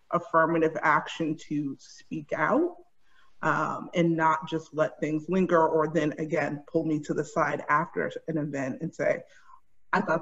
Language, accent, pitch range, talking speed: English, American, 155-180 Hz, 160 wpm